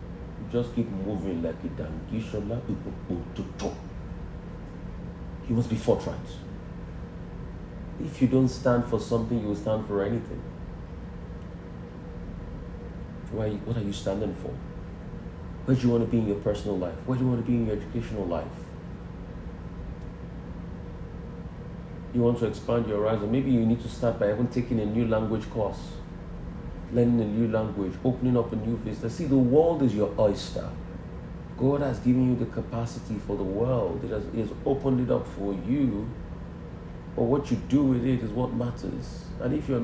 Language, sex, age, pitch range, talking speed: English, male, 40-59, 95-125 Hz, 165 wpm